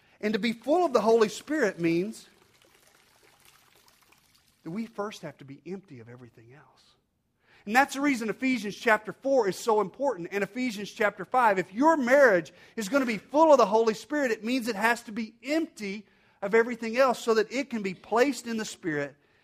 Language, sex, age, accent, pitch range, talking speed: English, male, 40-59, American, 140-225 Hz, 200 wpm